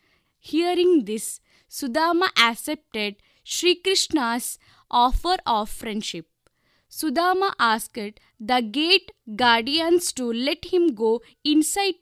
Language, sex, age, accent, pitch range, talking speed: Kannada, female, 20-39, native, 235-345 Hz, 95 wpm